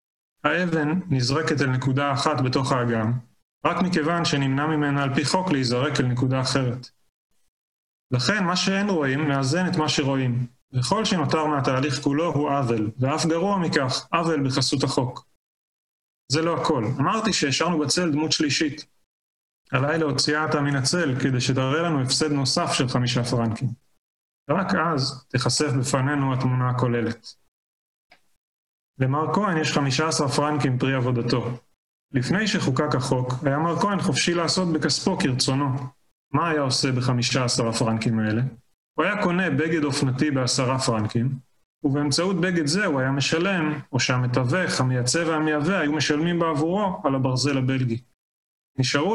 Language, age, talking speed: Hebrew, 30-49, 135 wpm